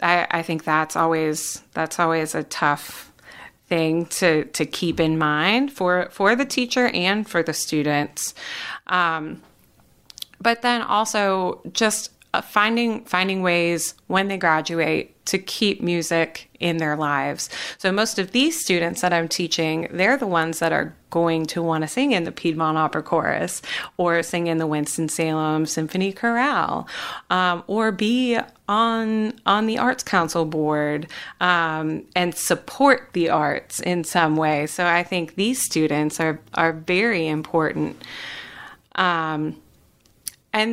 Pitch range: 160-205 Hz